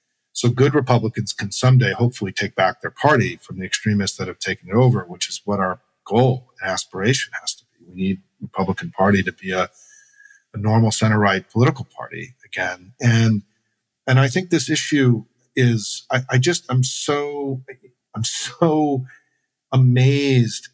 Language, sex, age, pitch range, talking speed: English, male, 50-69, 105-130 Hz, 170 wpm